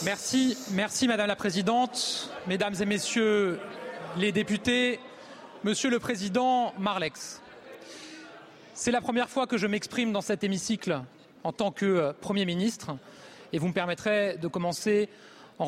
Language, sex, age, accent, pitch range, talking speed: French, male, 30-49, French, 190-240 Hz, 140 wpm